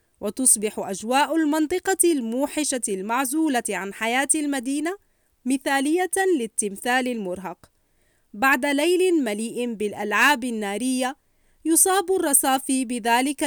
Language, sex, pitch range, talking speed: Arabic, female, 230-310 Hz, 85 wpm